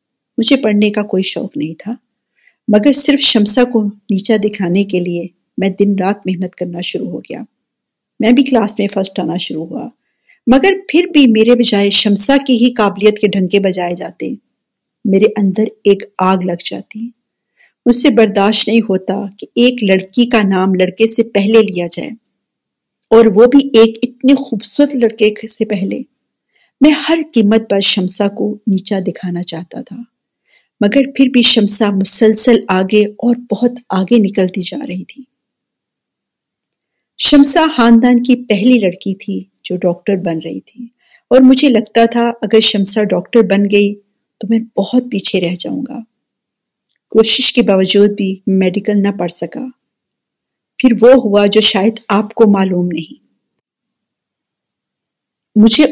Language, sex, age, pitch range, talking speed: Urdu, female, 50-69, 195-245 Hz, 150 wpm